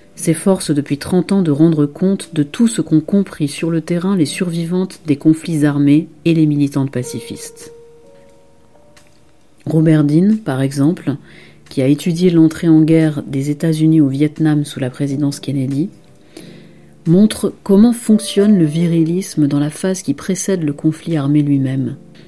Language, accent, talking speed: French, French, 150 wpm